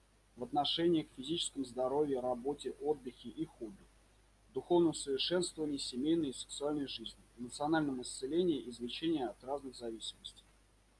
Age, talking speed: 20-39, 120 wpm